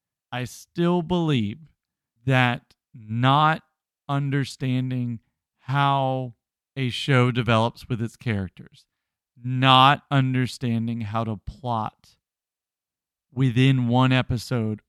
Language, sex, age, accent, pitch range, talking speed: English, male, 40-59, American, 110-135 Hz, 85 wpm